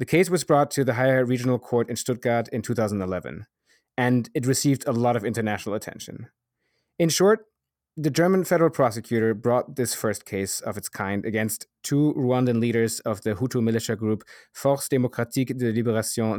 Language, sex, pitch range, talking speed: English, male, 110-135 Hz, 170 wpm